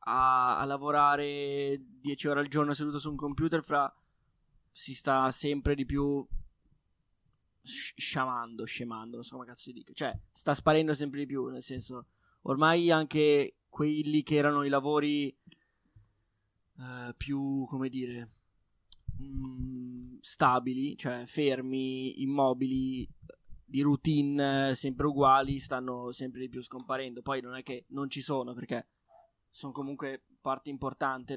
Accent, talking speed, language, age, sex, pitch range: native, 140 wpm, Italian, 20-39, male, 125-140 Hz